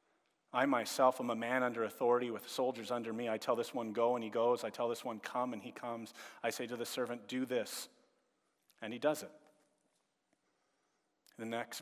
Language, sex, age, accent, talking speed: English, male, 40-59, American, 205 wpm